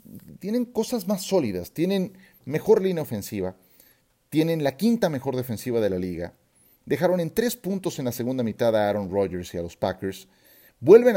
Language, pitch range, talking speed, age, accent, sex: Spanish, 115-175 Hz, 170 wpm, 40-59, Mexican, male